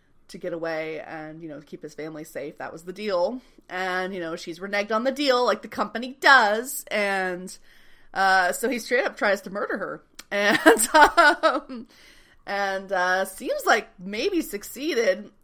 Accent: American